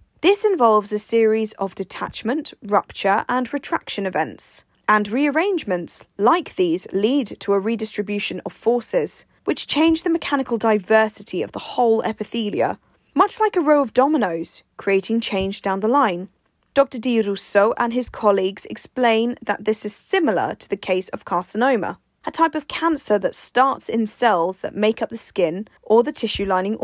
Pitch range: 200-255 Hz